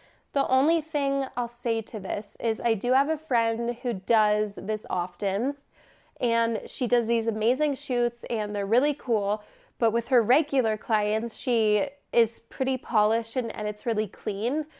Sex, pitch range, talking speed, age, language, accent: female, 225-275 Hz, 160 wpm, 20-39, English, American